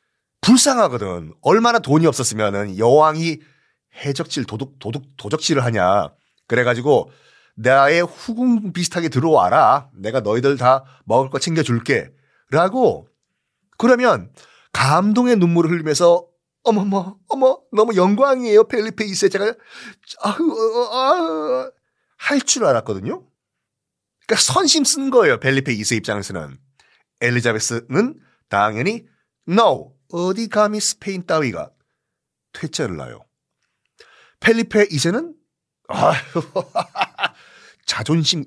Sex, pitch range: male, 130-215 Hz